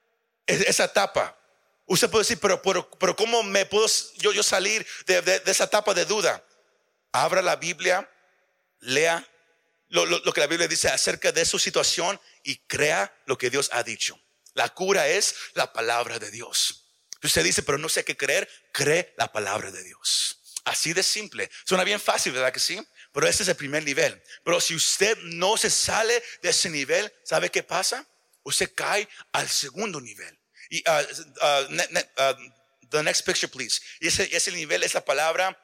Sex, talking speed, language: male, 185 wpm, Spanish